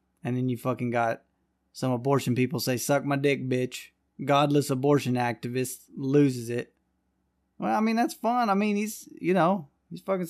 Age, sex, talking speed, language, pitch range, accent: 20-39, male, 175 wpm, English, 120-155 Hz, American